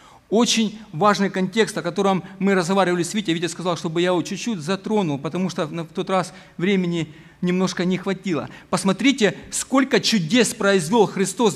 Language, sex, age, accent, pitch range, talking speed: Ukrainian, male, 40-59, native, 185-220 Hz, 155 wpm